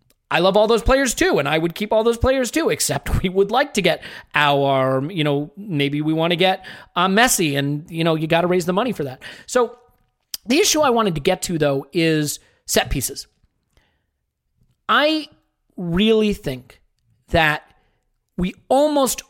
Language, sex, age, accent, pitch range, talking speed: English, male, 40-59, American, 160-245 Hz, 185 wpm